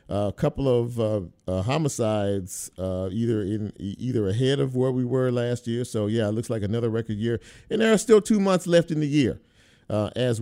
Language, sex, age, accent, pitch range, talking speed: English, male, 50-69, American, 105-130 Hz, 220 wpm